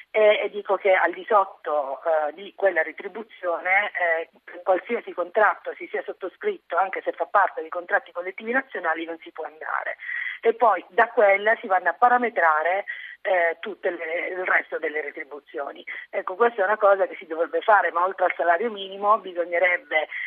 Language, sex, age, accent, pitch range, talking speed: Italian, female, 40-59, native, 170-230 Hz, 165 wpm